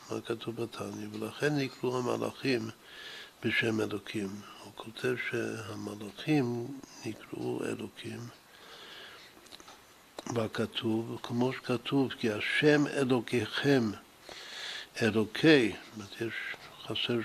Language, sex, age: Hebrew, male, 60-79